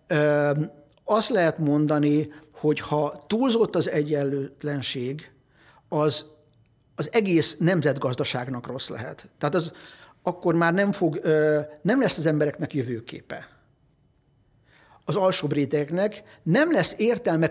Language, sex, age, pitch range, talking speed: Hungarian, male, 50-69, 140-170 Hz, 115 wpm